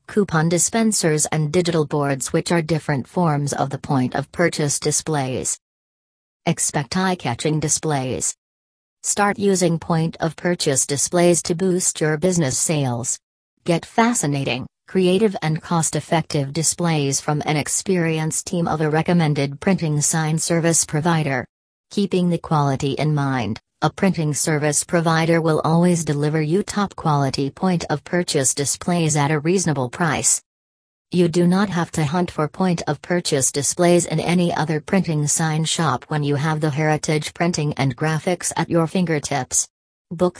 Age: 40-59